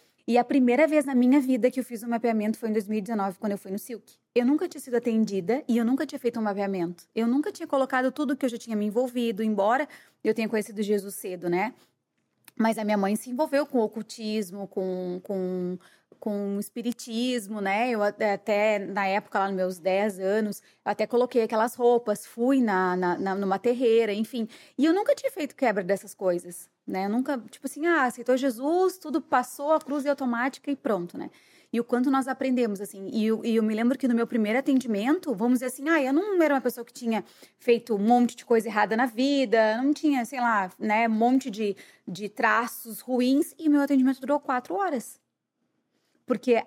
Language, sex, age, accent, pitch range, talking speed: Portuguese, female, 20-39, Brazilian, 210-260 Hz, 210 wpm